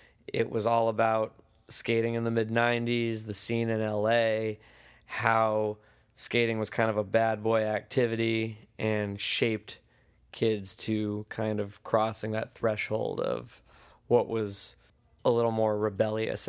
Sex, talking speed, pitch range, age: male, 135 wpm, 110-115 Hz, 20-39